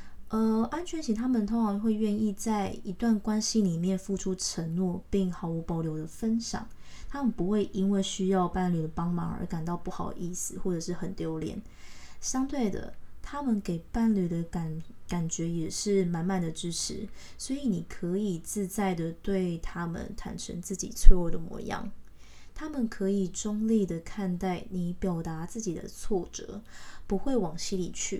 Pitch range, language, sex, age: 175-210 Hz, Chinese, female, 20-39